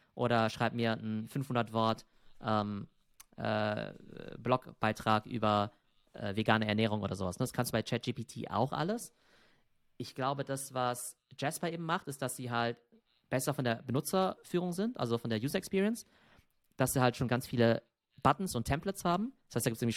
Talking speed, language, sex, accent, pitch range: 170 wpm, German, male, German, 110-135 Hz